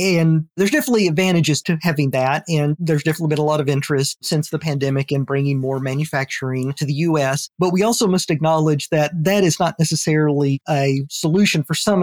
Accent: American